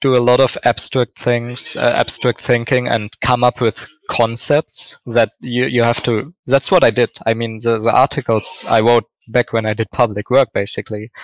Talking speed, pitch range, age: 200 wpm, 110-125 Hz, 20-39